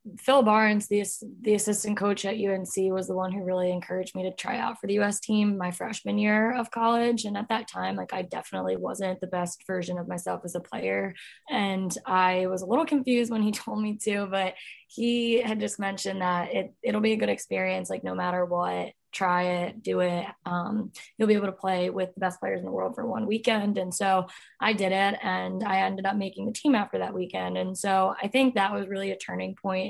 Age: 20-39